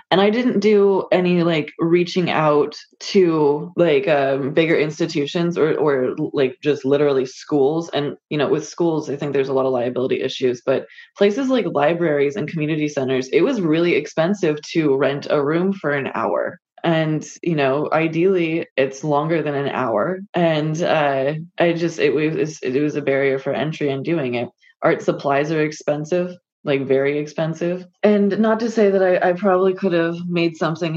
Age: 20-39